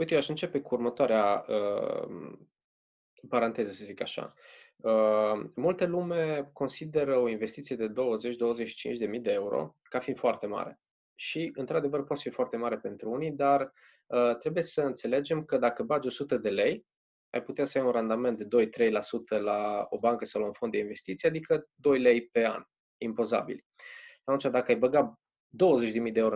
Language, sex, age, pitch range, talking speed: Romanian, male, 20-39, 115-165 Hz, 170 wpm